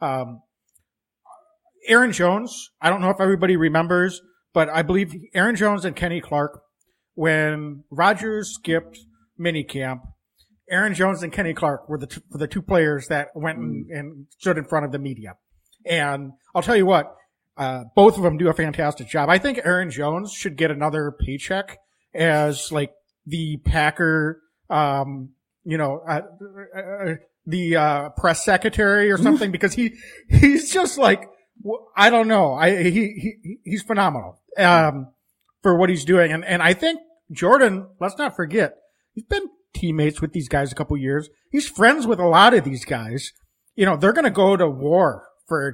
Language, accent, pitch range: English, American, 150-200 Hz